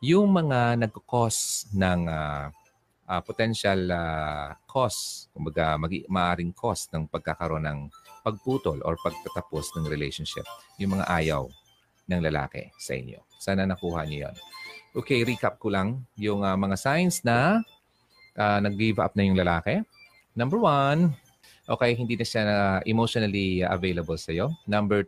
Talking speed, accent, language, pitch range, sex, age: 140 wpm, native, Filipino, 90-120 Hz, male, 30-49